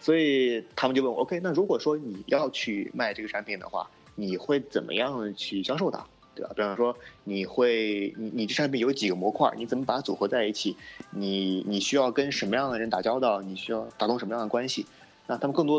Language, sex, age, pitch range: Chinese, male, 20-39, 100-125 Hz